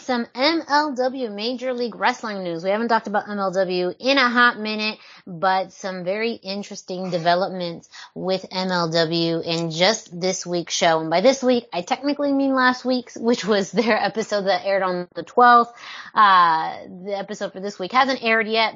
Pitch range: 180-235 Hz